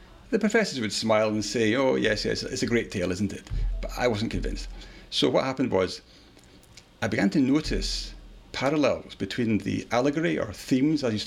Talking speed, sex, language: 185 wpm, male, English